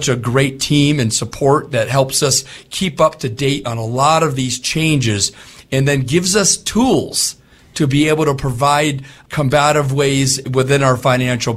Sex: male